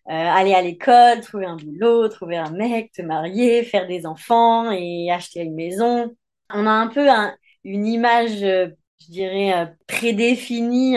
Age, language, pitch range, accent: 30-49, French, 185-235 Hz, French